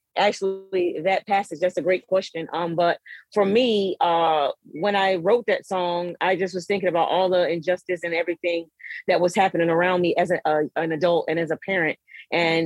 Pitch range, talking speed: 170-195 Hz, 195 wpm